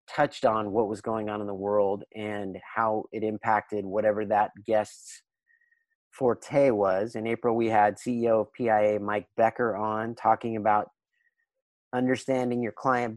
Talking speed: 150 wpm